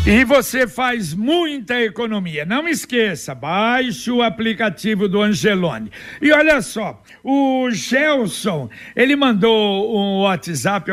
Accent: Brazilian